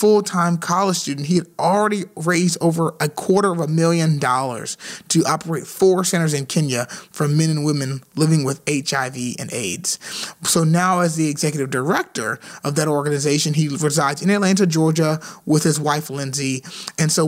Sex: male